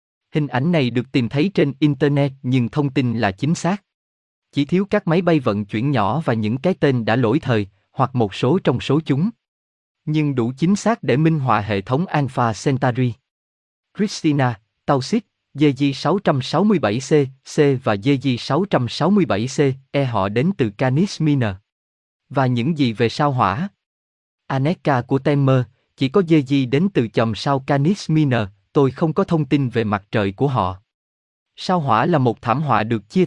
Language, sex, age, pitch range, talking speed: Vietnamese, male, 20-39, 115-155 Hz, 175 wpm